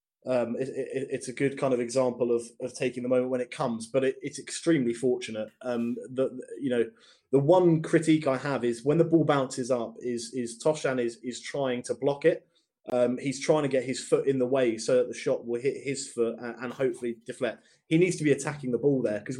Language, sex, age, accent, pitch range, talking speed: English, male, 20-39, British, 120-145 Hz, 235 wpm